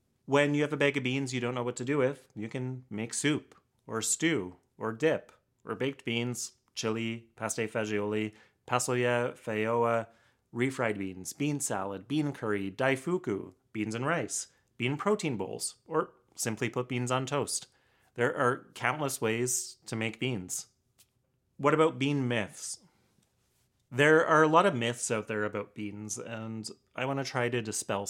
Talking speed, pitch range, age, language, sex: 165 wpm, 110-140 Hz, 30-49, English, male